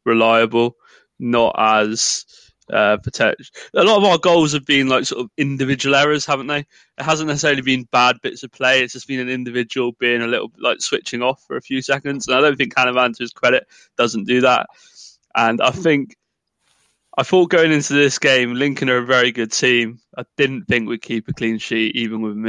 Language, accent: English, British